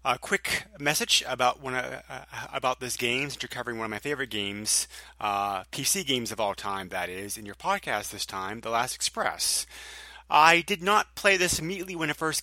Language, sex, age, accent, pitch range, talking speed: English, male, 30-49, American, 105-130 Hz, 195 wpm